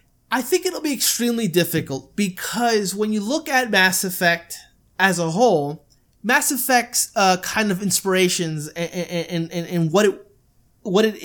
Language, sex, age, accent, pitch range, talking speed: English, male, 20-39, American, 160-205 Hz, 160 wpm